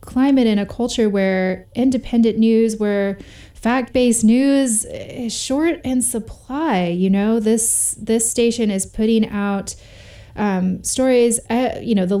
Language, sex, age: English, female, 20-39